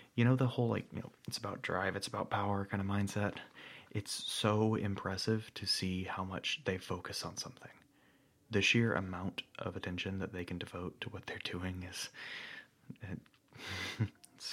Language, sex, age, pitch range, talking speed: English, male, 30-49, 100-135 Hz, 175 wpm